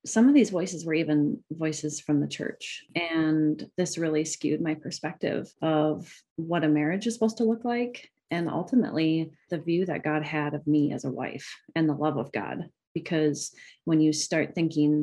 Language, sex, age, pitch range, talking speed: English, female, 30-49, 145-165 Hz, 190 wpm